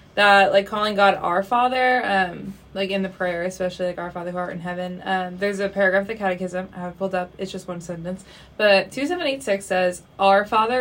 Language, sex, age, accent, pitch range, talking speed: English, female, 20-39, American, 180-195 Hz, 215 wpm